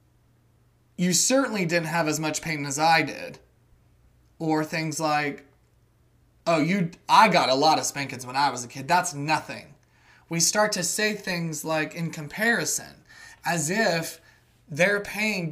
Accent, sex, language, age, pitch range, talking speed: American, male, English, 20-39, 150-180 Hz, 155 wpm